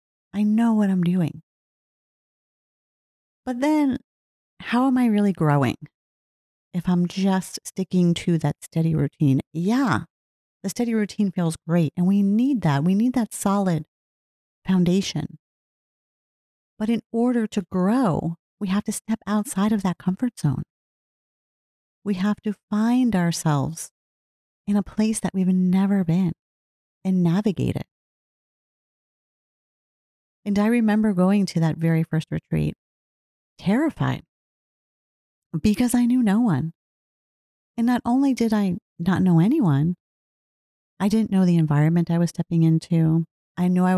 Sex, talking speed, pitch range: female, 135 wpm, 165-205 Hz